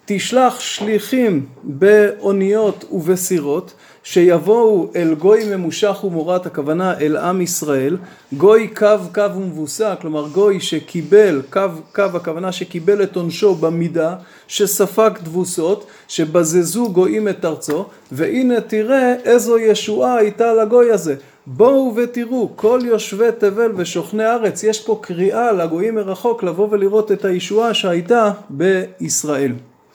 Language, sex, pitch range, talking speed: Hebrew, male, 160-220 Hz, 115 wpm